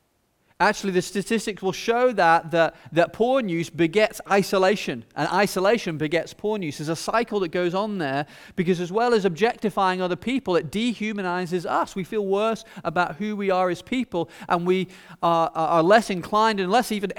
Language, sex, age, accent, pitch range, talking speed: English, male, 40-59, British, 165-210 Hz, 180 wpm